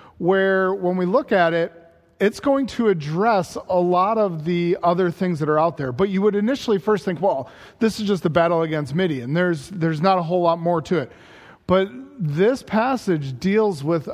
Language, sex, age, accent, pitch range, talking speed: English, male, 40-59, American, 175-210 Hz, 210 wpm